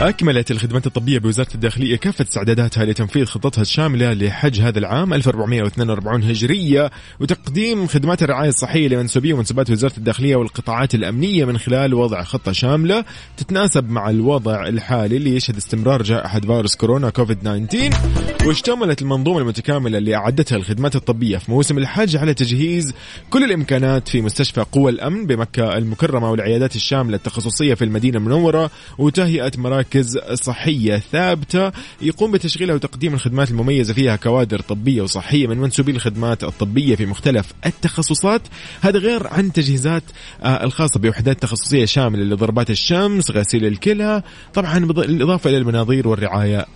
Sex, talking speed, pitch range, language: male, 135 wpm, 110-150 Hz, Arabic